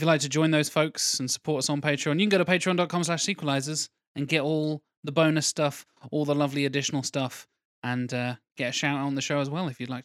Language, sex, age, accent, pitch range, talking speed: English, male, 20-39, British, 125-155 Hz, 255 wpm